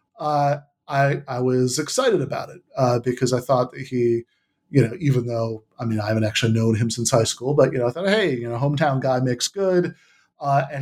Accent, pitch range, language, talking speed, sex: American, 120-135 Hz, English, 225 wpm, male